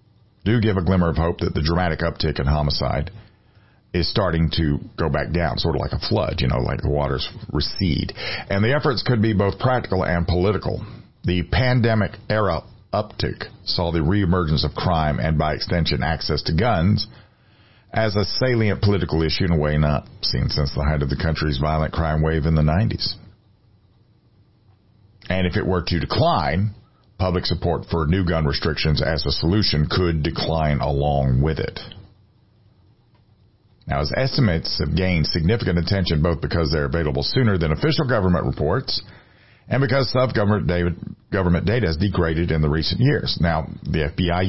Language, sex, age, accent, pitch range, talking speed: English, male, 50-69, American, 80-110 Hz, 165 wpm